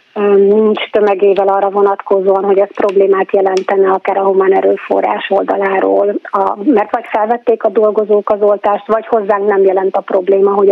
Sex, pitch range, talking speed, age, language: female, 200-220 Hz, 150 wpm, 30-49, Hungarian